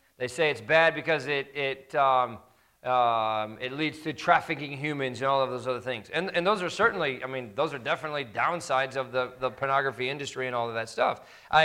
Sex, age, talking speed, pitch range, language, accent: male, 40-59, 215 wpm, 130-175 Hz, English, American